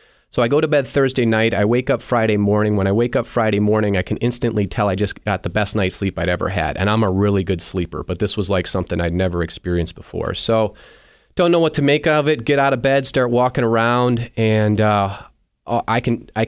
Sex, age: male, 30-49